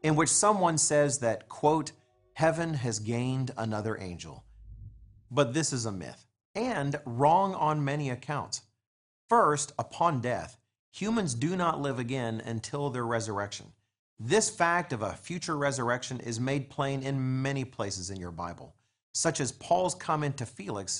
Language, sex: English, male